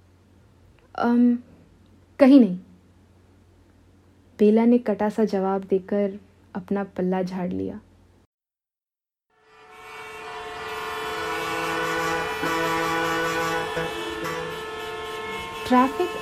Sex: female